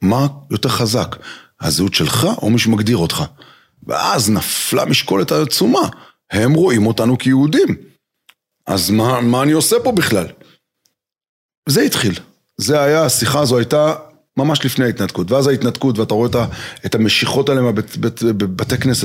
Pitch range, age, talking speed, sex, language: 110-155 Hz, 30-49, 140 wpm, male, Hebrew